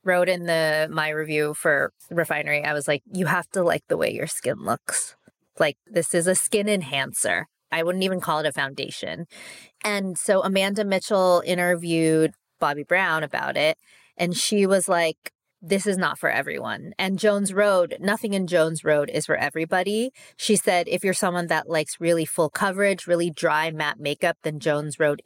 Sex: female